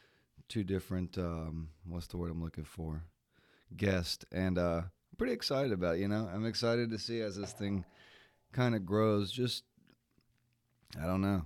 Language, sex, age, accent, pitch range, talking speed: English, male, 30-49, American, 85-100 Hz, 175 wpm